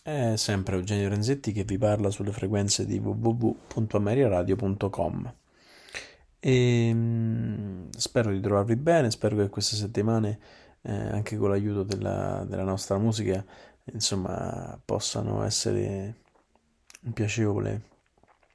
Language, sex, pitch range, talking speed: Italian, male, 95-115 Hz, 105 wpm